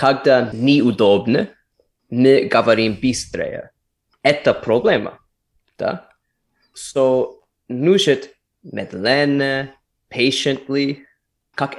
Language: Russian